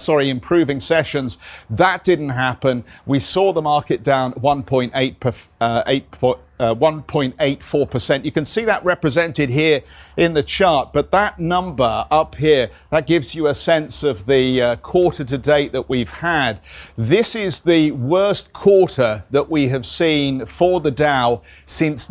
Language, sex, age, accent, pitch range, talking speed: English, male, 50-69, British, 120-155 Hz, 155 wpm